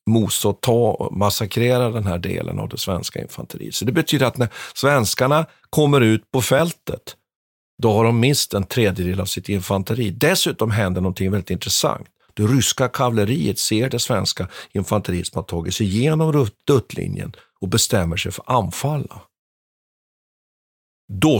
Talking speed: 155 wpm